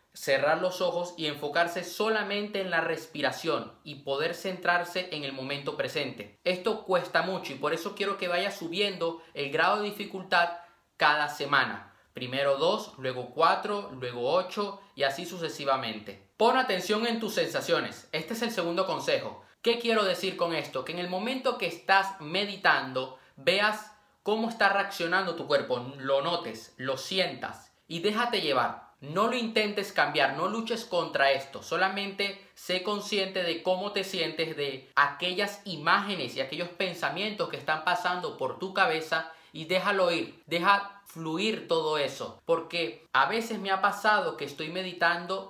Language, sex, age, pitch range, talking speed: Spanish, male, 20-39, 155-200 Hz, 155 wpm